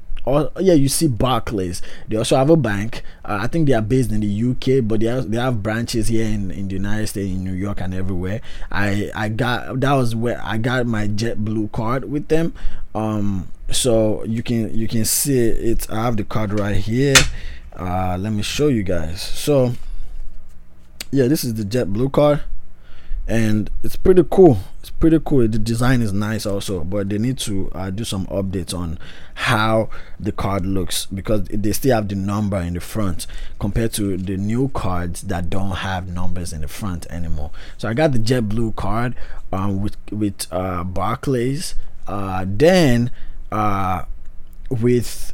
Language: English